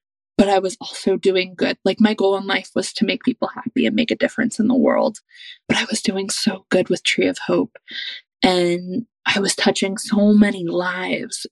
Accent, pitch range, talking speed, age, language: American, 195-255 Hz, 210 wpm, 20-39, English